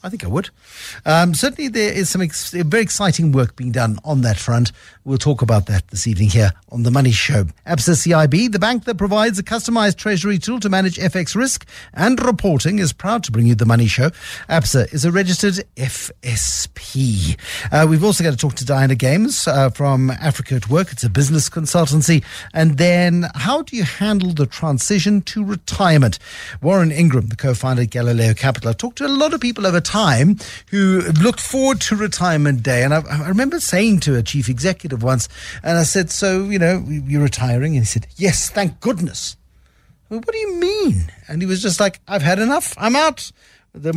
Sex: male